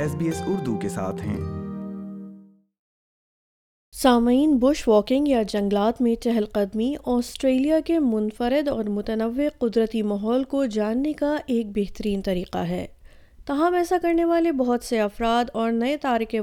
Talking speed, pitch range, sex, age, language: 125 wpm, 220-275 Hz, female, 20-39, Urdu